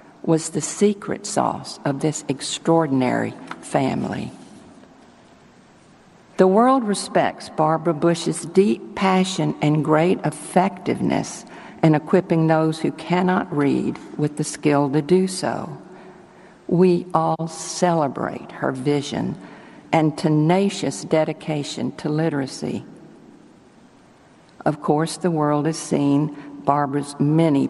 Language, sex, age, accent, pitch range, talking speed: English, female, 50-69, American, 145-180 Hz, 105 wpm